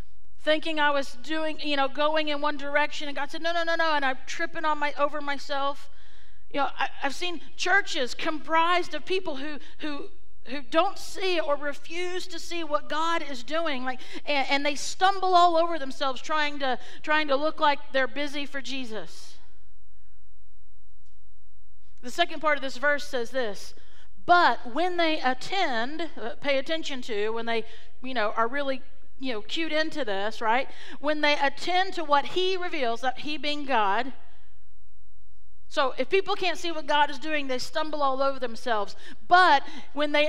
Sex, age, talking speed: female, 50-69, 180 wpm